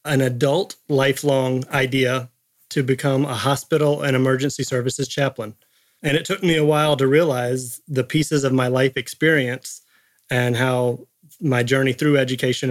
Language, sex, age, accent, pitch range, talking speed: English, male, 30-49, American, 125-145 Hz, 150 wpm